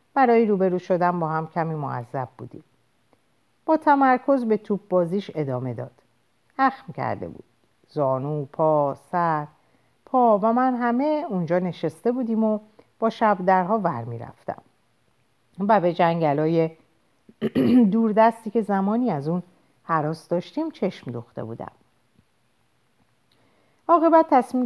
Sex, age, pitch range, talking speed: female, 50-69, 145-220 Hz, 120 wpm